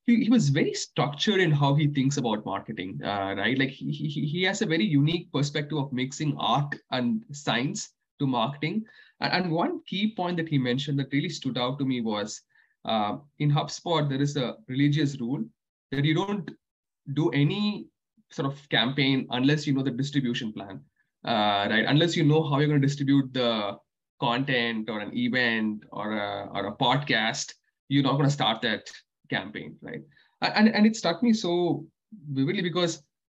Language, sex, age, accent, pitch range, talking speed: English, male, 20-39, Indian, 125-160 Hz, 180 wpm